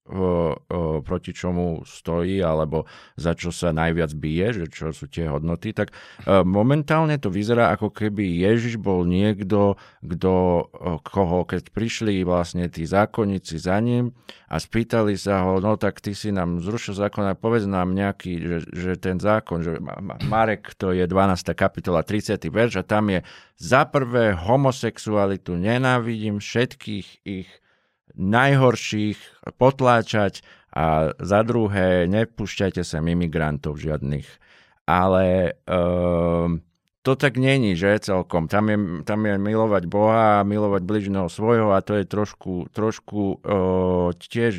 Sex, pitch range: male, 85-105 Hz